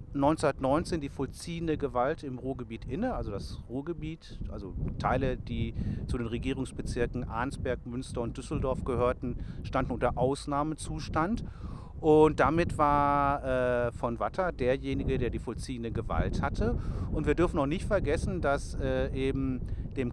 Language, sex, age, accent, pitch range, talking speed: German, male, 40-59, German, 115-140 Hz, 135 wpm